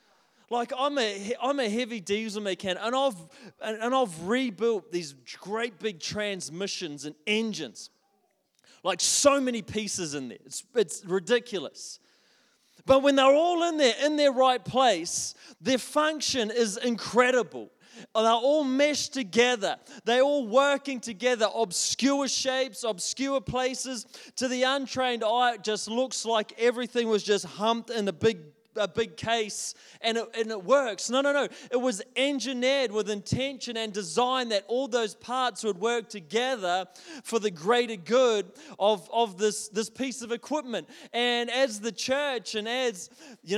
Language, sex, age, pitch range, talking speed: English, male, 20-39, 215-260 Hz, 155 wpm